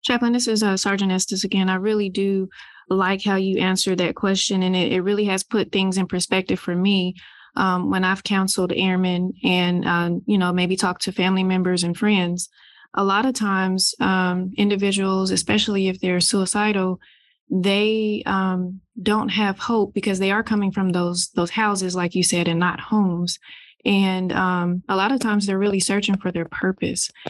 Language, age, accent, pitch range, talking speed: English, 20-39, American, 180-200 Hz, 185 wpm